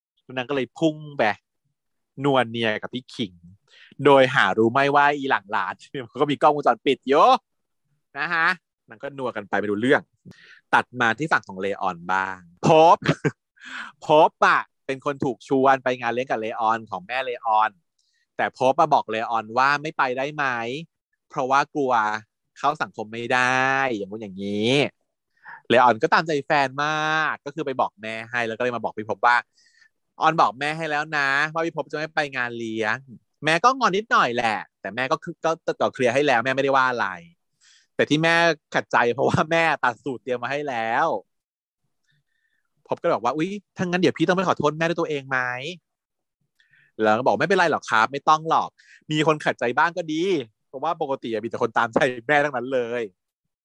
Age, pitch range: 20-39, 115-155 Hz